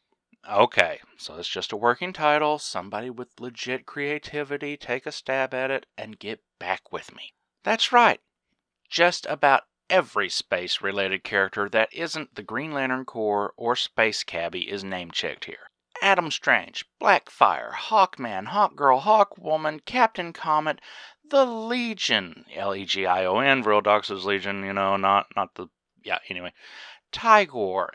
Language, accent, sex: English, American, male